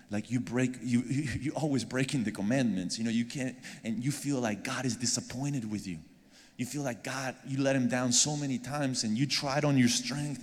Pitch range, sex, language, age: 110-135 Hz, male, English, 30-49